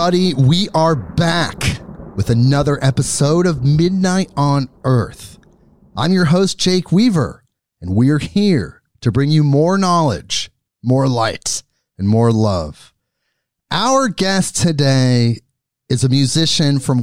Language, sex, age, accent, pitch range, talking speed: English, male, 30-49, American, 135-195 Hz, 125 wpm